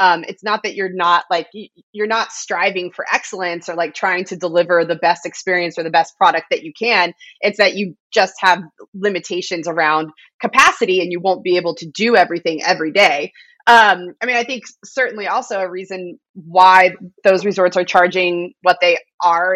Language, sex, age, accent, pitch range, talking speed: English, female, 20-39, American, 165-205 Hz, 190 wpm